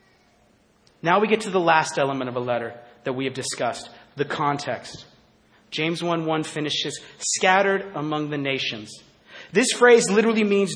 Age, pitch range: 30-49, 150-210 Hz